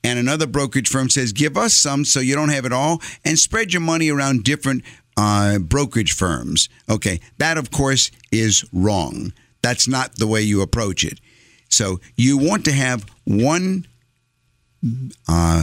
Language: English